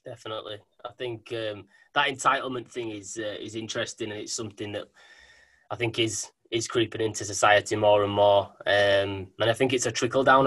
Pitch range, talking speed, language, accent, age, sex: 115-145 Hz, 190 wpm, English, British, 20-39, male